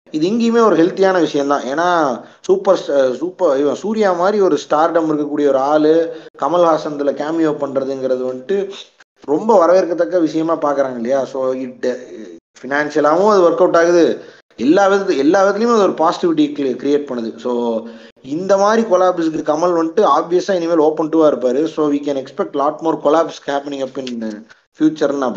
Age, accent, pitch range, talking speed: 30-49, native, 130-175 Hz, 140 wpm